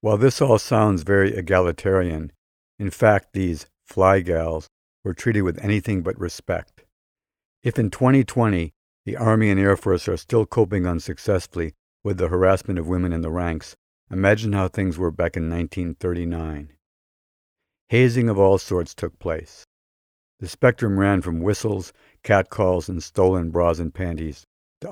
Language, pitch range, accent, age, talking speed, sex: English, 85-100 Hz, American, 60-79, 145 wpm, male